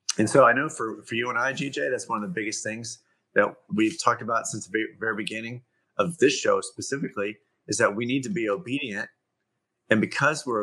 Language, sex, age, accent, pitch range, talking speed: English, male, 30-49, American, 105-125 Hz, 215 wpm